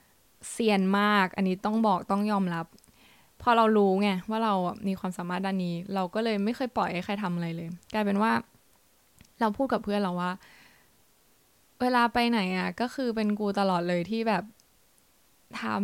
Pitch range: 185-220 Hz